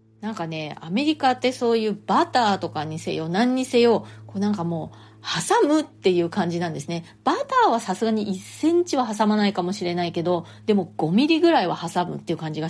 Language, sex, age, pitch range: Japanese, female, 30-49, 165-230 Hz